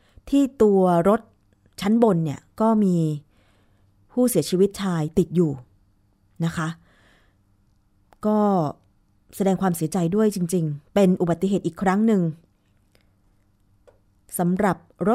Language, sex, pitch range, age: Thai, female, 145-210 Hz, 20-39